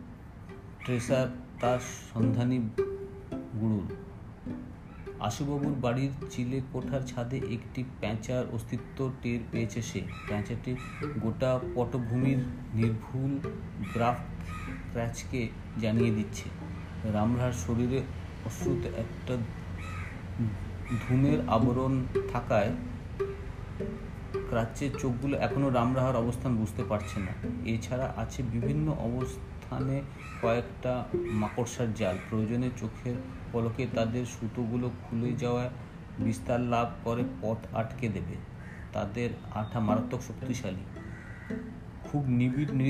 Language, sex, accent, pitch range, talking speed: Bengali, male, native, 105-125 Hz, 45 wpm